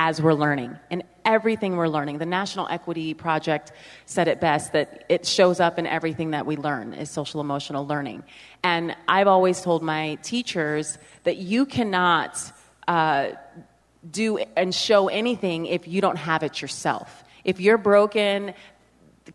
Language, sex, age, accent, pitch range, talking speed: English, female, 30-49, American, 170-220 Hz, 160 wpm